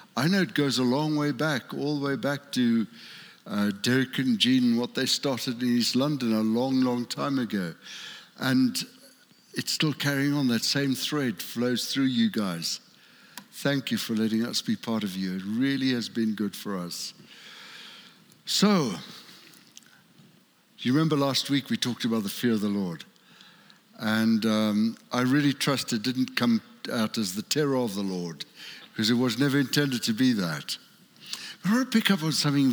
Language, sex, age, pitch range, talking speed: English, male, 60-79, 125-185 Hz, 185 wpm